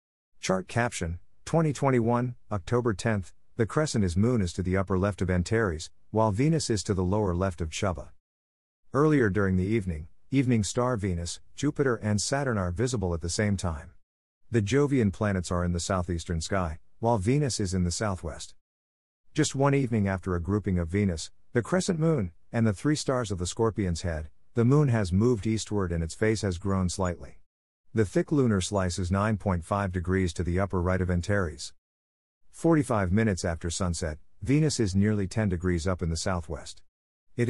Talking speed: 180 wpm